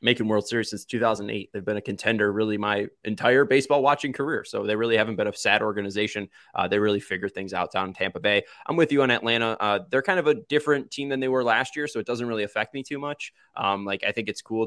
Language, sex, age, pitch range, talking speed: English, male, 20-39, 105-125 Hz, 260 wpm